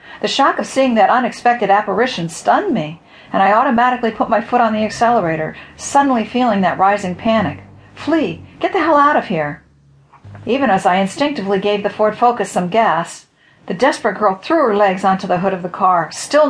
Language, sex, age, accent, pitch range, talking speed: English, female, 50-69, American, 185-240 Hz, 195 wpm